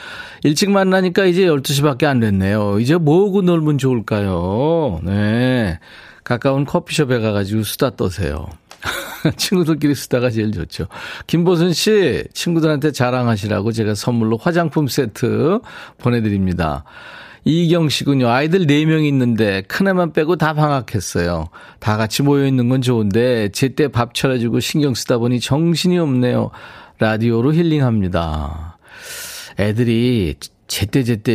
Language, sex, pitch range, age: Korean, male, 105-150 Hz, 40-59